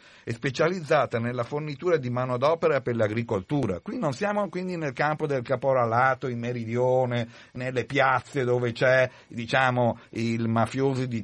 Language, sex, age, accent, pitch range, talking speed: Italian, male, 50-69, native, 110-135 Hz, 140 wpm